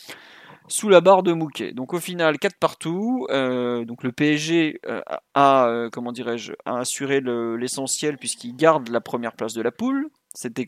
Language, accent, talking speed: French, French, 185 wpm